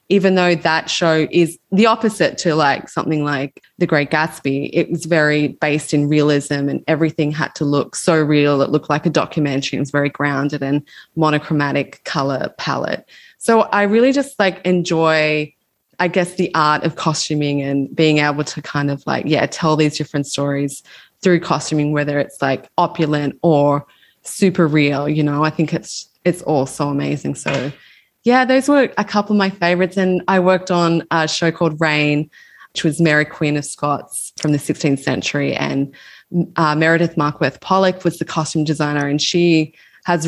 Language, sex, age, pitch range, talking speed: English, female, 20-39, 145-165 Hz, 180 wpm